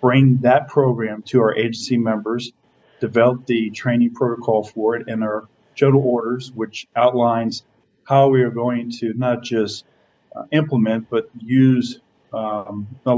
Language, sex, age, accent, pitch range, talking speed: English, male, 40-59, American, 115-135 Hz, 135 wpm